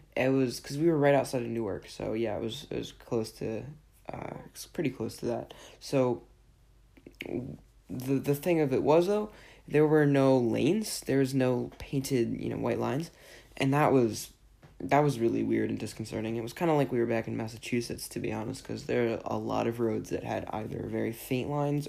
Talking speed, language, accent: 210 wpm, English, American